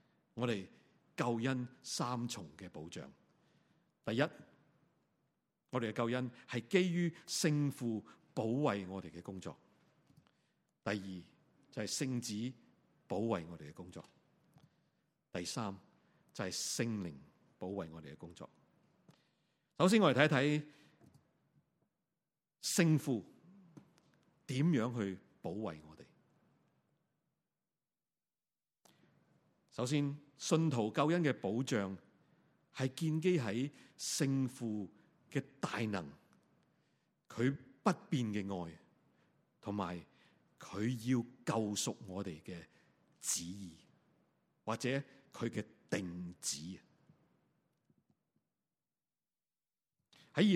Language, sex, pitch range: Chinese, male, 100-150 Hz